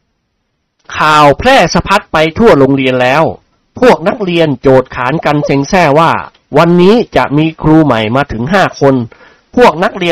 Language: Thai